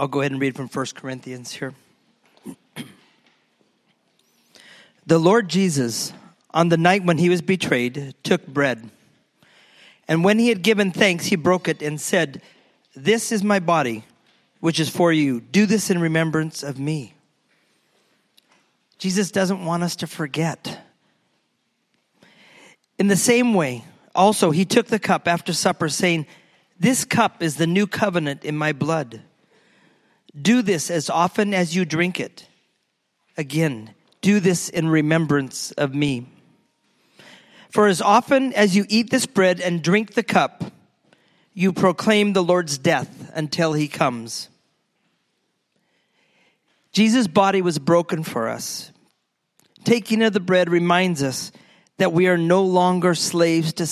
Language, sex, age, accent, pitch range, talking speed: English, male, 40-59, American, 150-195 Hz, 140 wpm